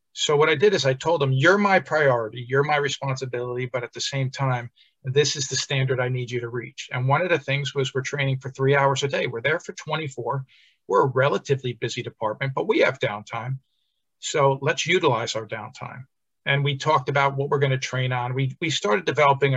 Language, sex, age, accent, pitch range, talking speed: English, male, 50-69, American, 130-145 Hz, 225 wpm